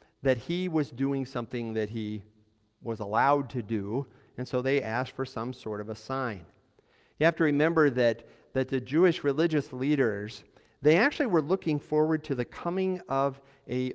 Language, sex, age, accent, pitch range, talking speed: English, male, 50-69, American, 115-150 Hz, 175 wpm